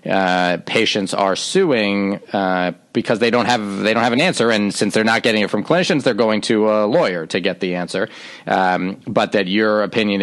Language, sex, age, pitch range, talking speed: English, male, 40-59, 95-105 Hz, 210 wpm